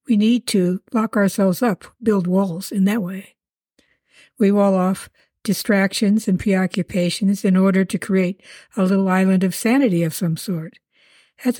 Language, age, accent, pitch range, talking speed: English, 60-79, American, 190-230 Hz, 155 wpm